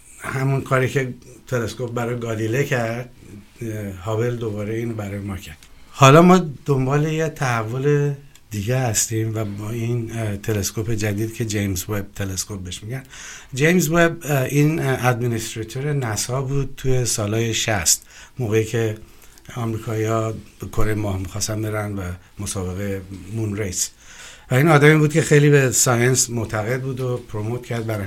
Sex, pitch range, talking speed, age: male, 110-135 Hz, 135 wpm, 60-79